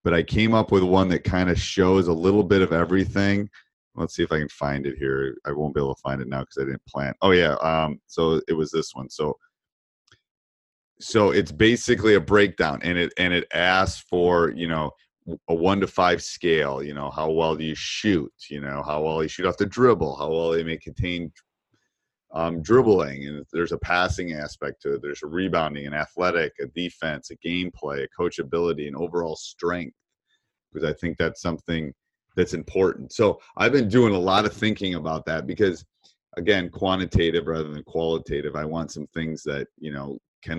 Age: 30-49